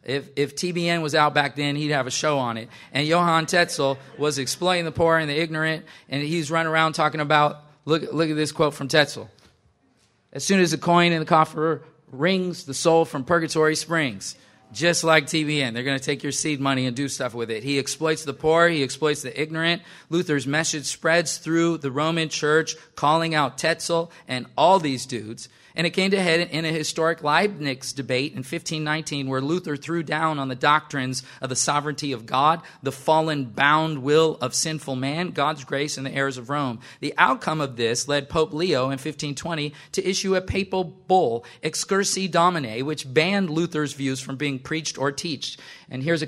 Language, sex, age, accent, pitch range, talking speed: English, male, 40-59, American, 135-165 Hz, 200 wpm